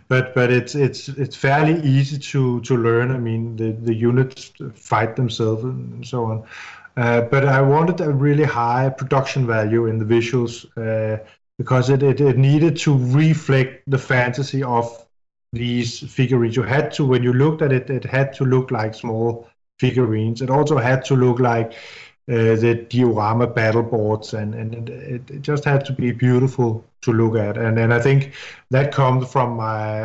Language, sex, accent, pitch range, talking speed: English, male, Danish, 110-130 Hz, 180 wpm